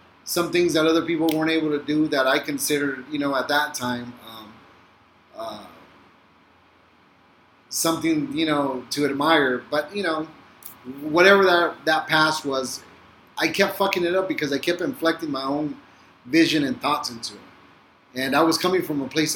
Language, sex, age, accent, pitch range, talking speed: English, male, 30-49, American, 140-175 Hz, 170 wpm